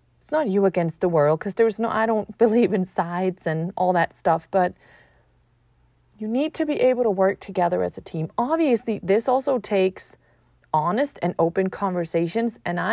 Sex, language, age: female, English, 30-49